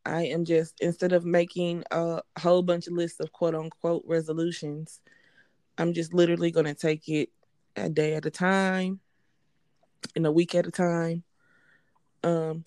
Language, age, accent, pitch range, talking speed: English, 20-39, American, 160-175 Hz, 155 wpm